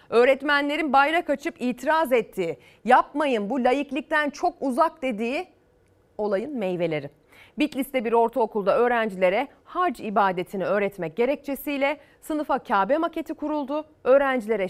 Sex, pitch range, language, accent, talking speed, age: female, 185-295 Hz, Turkish, native, 105 wpm, 40-59